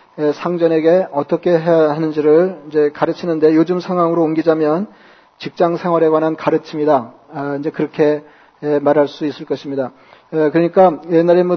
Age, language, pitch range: 40-59, Korean, 150-175 Hz